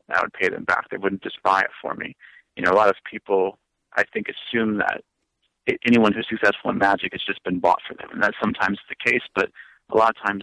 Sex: male